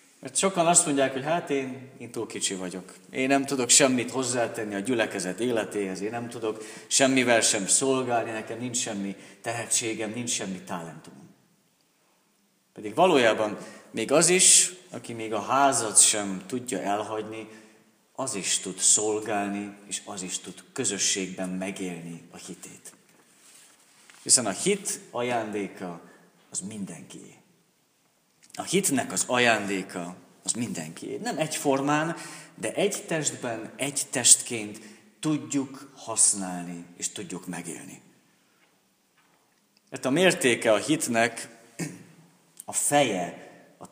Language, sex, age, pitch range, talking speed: Hungarian, male, 30-49, 100-135 Hz, 120 wpm